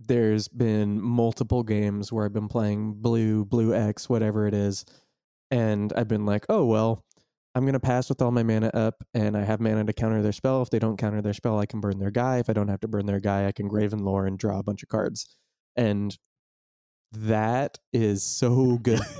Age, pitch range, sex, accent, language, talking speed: 20-39, 105-120 Hz, male, American, English, 225 wpm